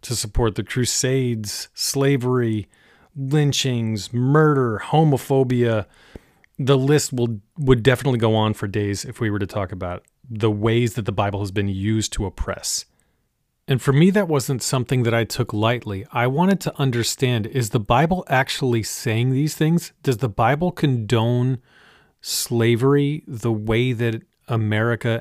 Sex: male